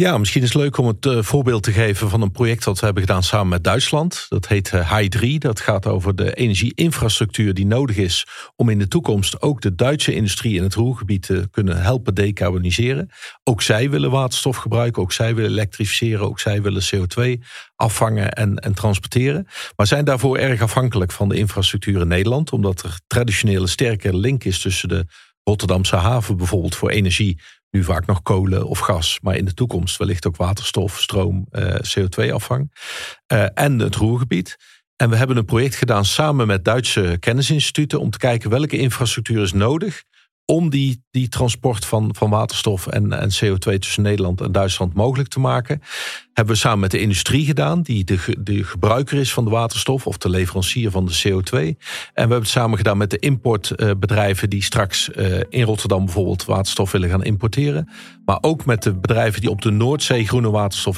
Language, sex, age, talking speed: Dutch, male, 50-69, 185 wpm